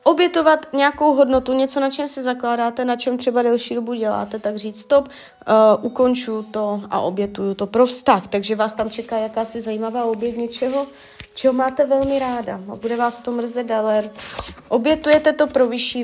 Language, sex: Czech, female